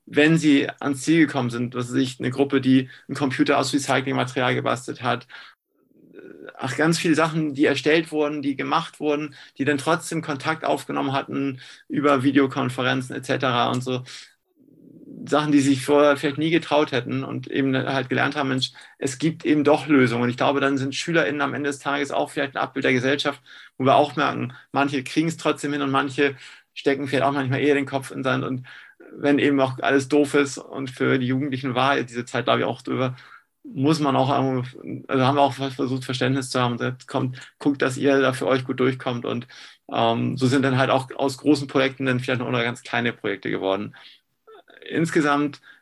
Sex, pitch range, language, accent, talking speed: male, 130-145 Hz, German, German, 200 wpm